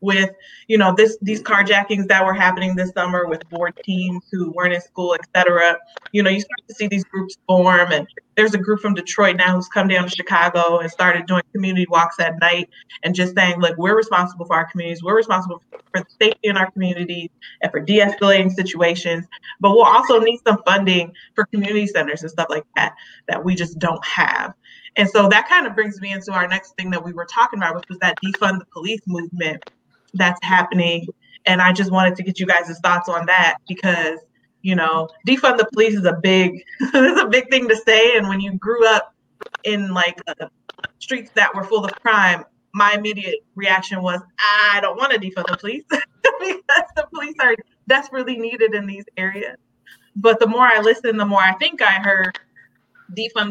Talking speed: 205 wpm